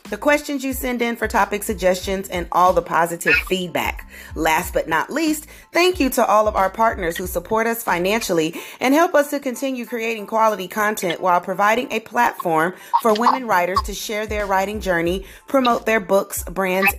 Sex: female